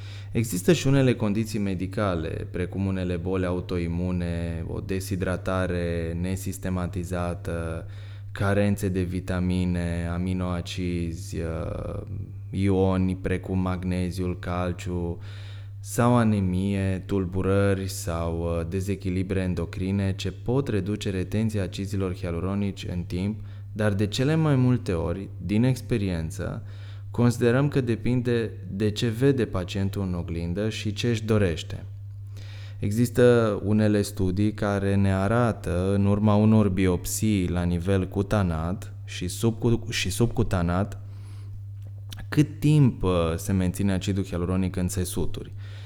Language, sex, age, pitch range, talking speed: Romanian, male, 20-39, 95-105 Hz, 105 wpm